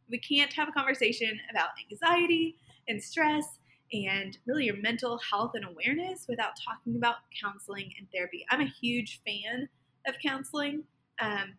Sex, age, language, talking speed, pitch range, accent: female, 20-39, English, 150 wpm, 200-255 Hz, American